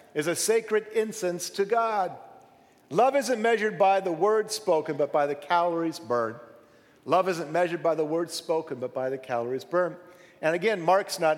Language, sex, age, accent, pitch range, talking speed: English, male, 50-69, American, 170-250 Hz, 180 wpm